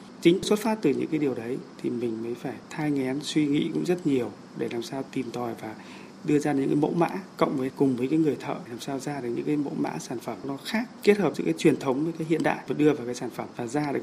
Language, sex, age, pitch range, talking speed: Vietnamese, male, 20-39, 120-150 Hz, 295 wpm